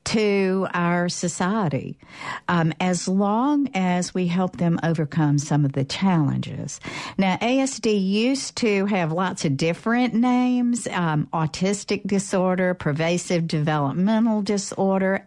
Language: English